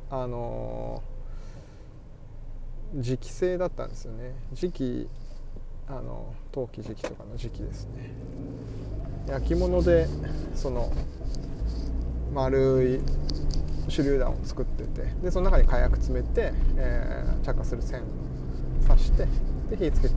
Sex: male